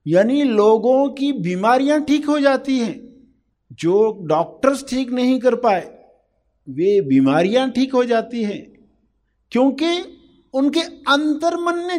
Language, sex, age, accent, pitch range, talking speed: Hindi, male, 50-69, native, 180-260 Hz, 120 wpm